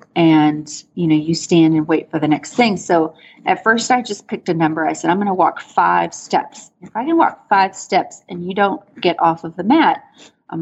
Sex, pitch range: female, 170-235 Hz